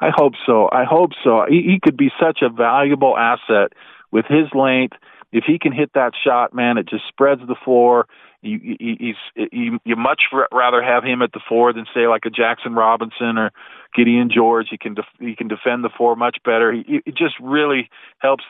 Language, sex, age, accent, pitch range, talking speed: English, male, 40-59, American, 115-130 Hz, 215 wpm